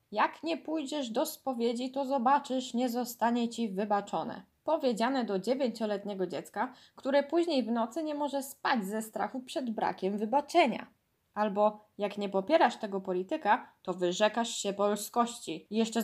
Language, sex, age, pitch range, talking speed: Polish, female, 10-29, 190-260 Hz, 140 wpm